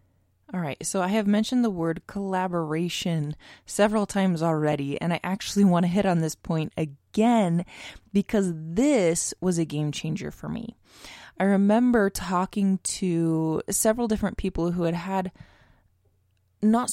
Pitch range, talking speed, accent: 155-200 Hz, 145 wpm, American